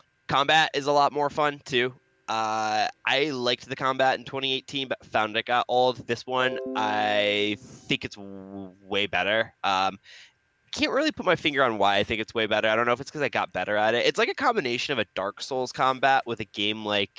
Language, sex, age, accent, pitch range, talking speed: English, male, 10-29, American, 100-125 Hz, 225 wpm